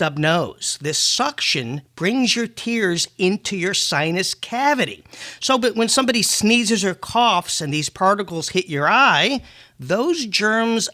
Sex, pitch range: male, 165-220 Hz